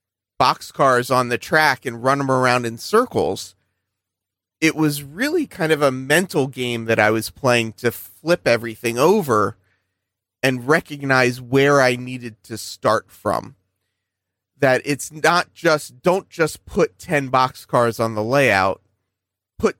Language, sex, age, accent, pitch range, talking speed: English, male, 30-49, American, 105-140 Hz, 140 wpm